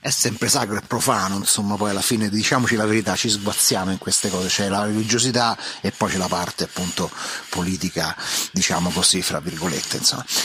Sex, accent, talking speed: male, native, 185 wpm